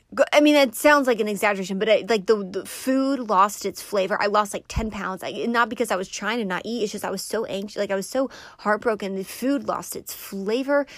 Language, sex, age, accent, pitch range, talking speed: English, female, 20-39, American, 195-240 Hz, 250 wpm